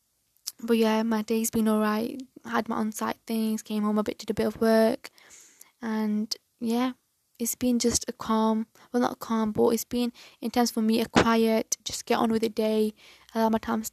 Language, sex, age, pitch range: English, female, 10-29, 220-235 Hz